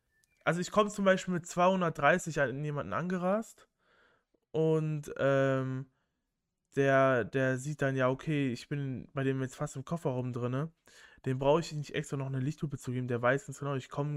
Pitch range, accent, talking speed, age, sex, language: 125-155 Hz, German, 185 wpm, 20-39, male, German